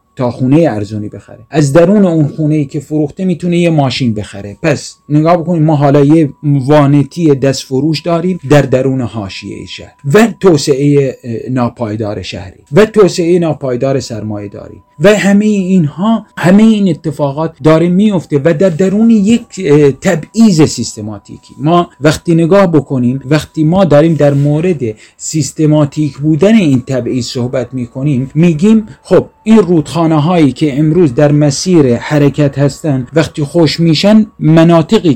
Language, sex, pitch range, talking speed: Persian, male, 140-170 Hz, 135 wpm